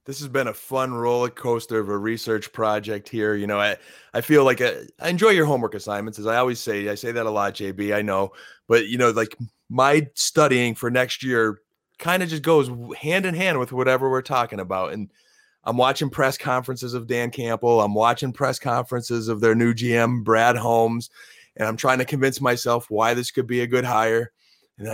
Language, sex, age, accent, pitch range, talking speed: English, male, 30-49, American, 110-130 Hz, 210 wpm